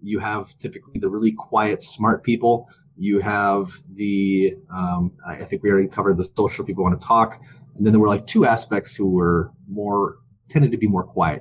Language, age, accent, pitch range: English, 30-49, American, 95-125 Hz